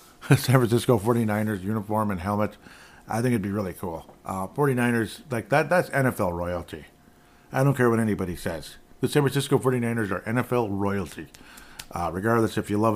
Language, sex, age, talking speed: English, male, 50-69, 170 wpm